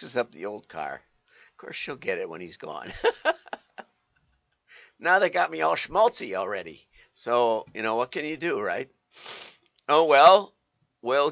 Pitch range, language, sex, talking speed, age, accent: 110-175 Hz, English, male, 165 wpm, 50-69, American